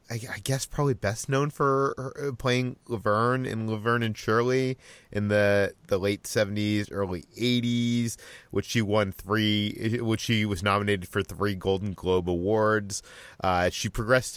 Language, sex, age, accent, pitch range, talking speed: English, male, 30-49, American, 95-115 Hz, 145 wpm